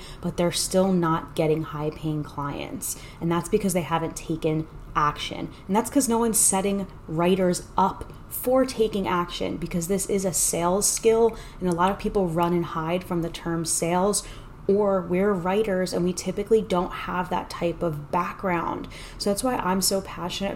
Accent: American